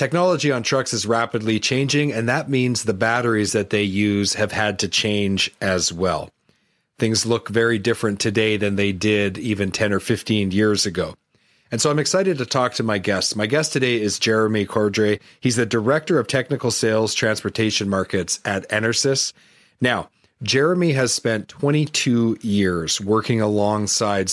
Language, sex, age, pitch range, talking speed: English, male, 40-59, 105-125 Hz, 165 wpm